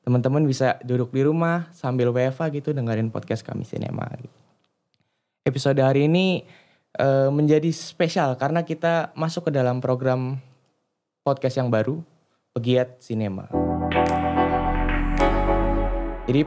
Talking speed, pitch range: 105 wpm, 115-135 Hz